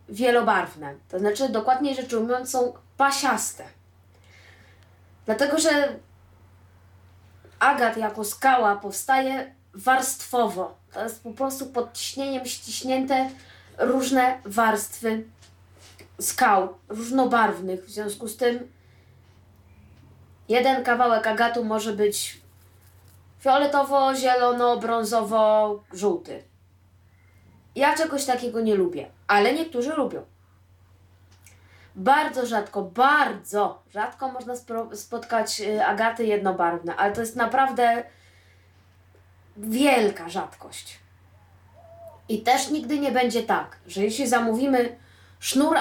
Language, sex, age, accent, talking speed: Polish, female, 20-39, native, 90 wpm